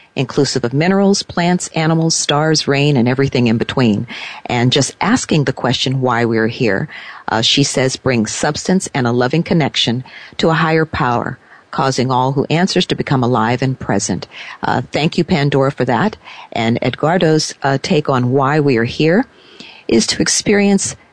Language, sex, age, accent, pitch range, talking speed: English, female, 50-69, American, 120-160 Hz, 170 wpm